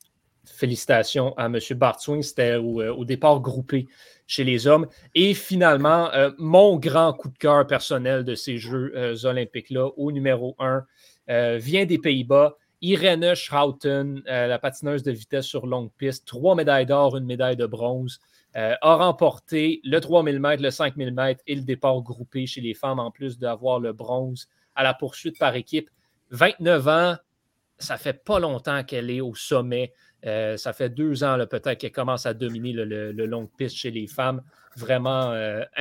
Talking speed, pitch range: 180 wpm, 125-150 Hz